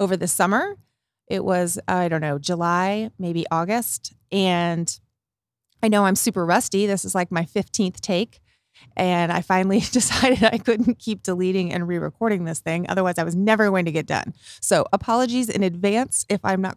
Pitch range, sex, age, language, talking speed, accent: 175-205 Hz, female, 30-49, English, 180 wpm, American